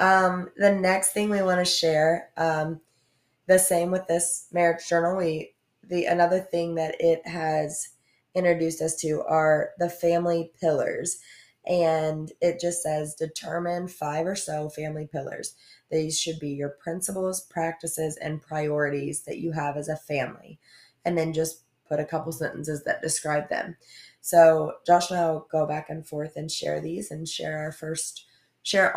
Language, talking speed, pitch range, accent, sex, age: English, 160 wpm, 150-170 Hz, American, female, 20-39